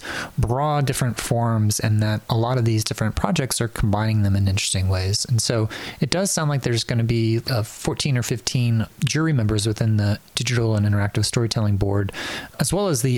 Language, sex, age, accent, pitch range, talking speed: English, male, 30-49, American, 100-125 Hz, 200 wpm